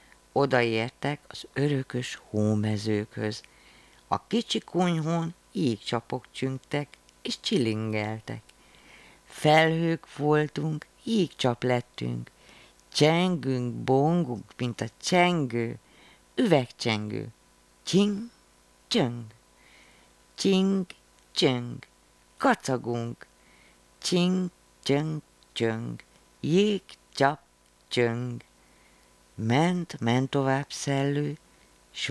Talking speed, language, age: 75 wpm, Hungarian, 50-69